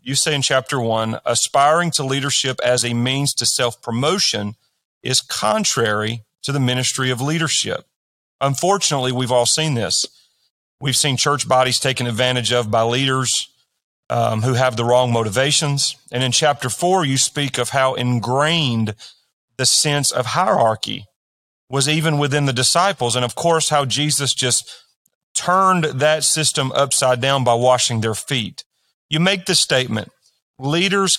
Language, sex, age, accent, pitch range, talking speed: English, male, 40-59, American, 120-150 Hz, 150 wpm